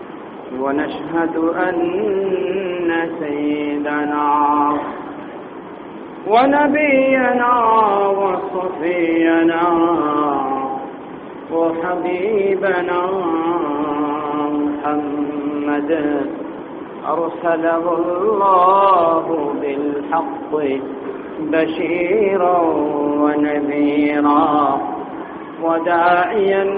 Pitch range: 145-195 Hz